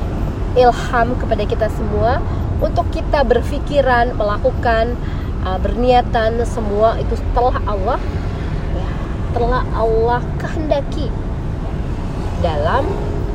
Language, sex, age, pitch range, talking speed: Indonesian, female, 20-39, 85-100 Hz, 85 wpm